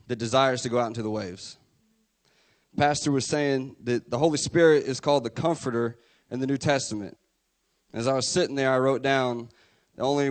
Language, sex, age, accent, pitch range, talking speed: English, male, 30-49, American, 115-145 Hz, 190 wpm